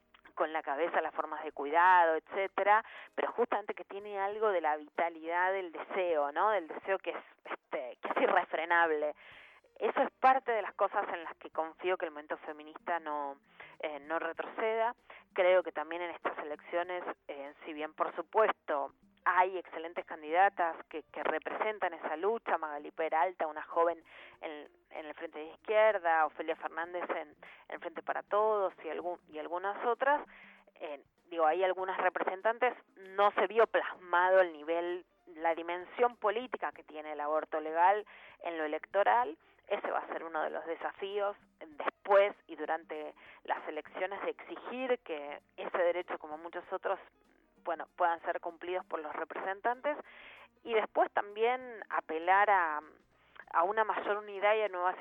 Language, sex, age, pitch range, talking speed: Spanish, female, 20-39, 160-205 Hz, 160 wpm